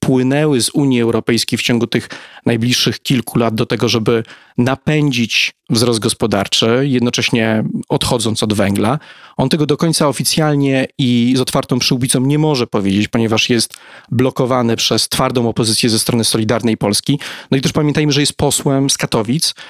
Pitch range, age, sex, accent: 115-140 Hz, 40-59, male, native